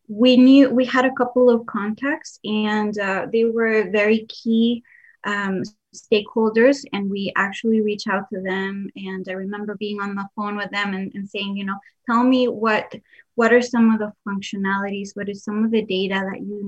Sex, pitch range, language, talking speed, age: female, 200-230 Hz, English, 195 wpm, 20-39